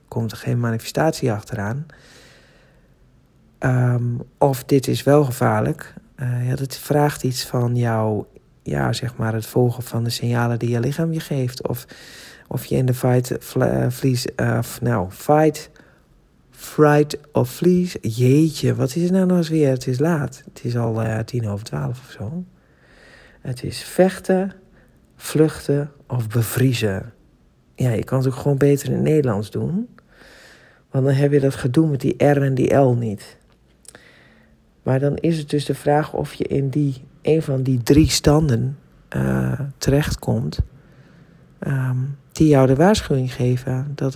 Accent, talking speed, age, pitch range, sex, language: Dutch, 165 wpm, 40-59, 120-145 Hz, male, Dutch